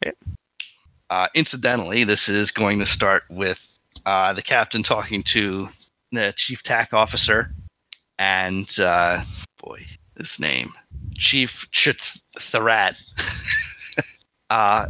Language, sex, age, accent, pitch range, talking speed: English, male, 30-49, American, 100-130 Hz, 100 wpm